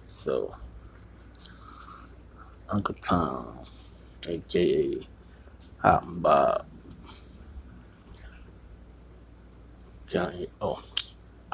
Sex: male